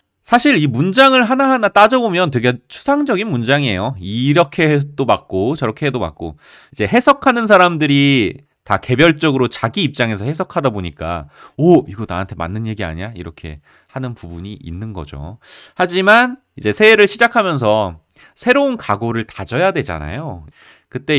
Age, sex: 30-49, male